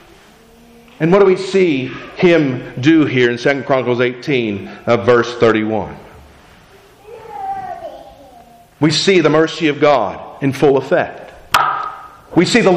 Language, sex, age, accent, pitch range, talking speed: English, male, 50-69, American, 150-230 Hz, 120 wpm